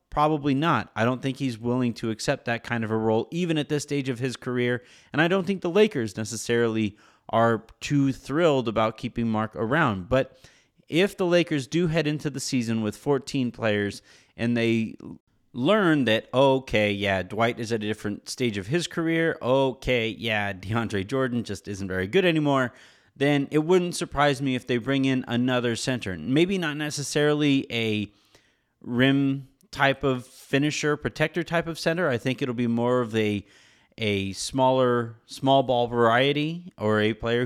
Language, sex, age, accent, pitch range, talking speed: English, male, 30-49, American, 115-145 Hz, 175 wpm